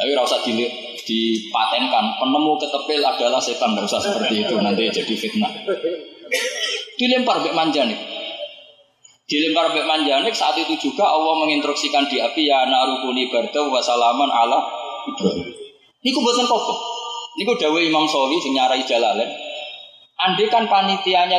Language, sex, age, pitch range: Indonesian, male, 20-39, 155-245 Hz